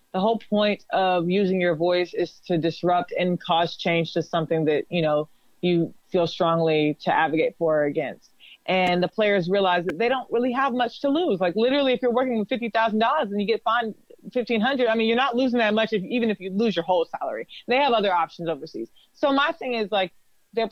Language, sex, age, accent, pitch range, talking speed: English, female, 20-39, American, 180-235 Hz, 220 wpm